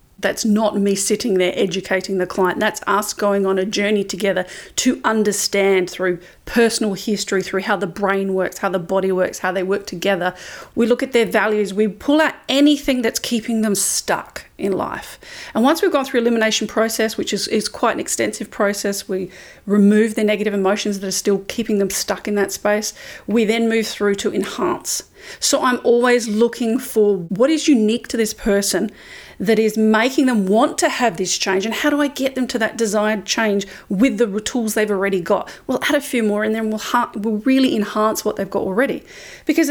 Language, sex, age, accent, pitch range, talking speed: English, female, 40-59, Australian, 200-250 Hz, 200 wpm